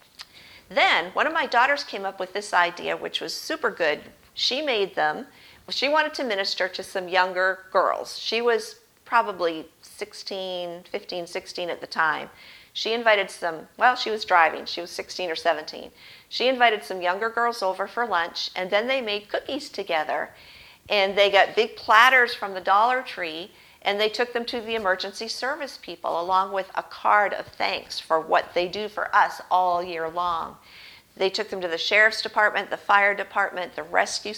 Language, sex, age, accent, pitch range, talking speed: English, female, 50-69, American, 180-225 Hz, 185 wpm